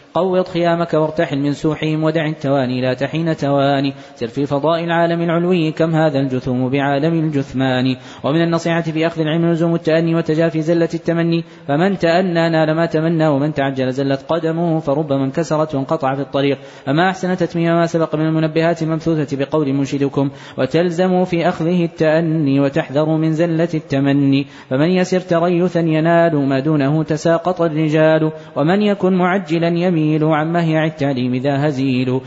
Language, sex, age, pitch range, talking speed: Arabic, male, 20-39, 140-170 Hz, 145 wpm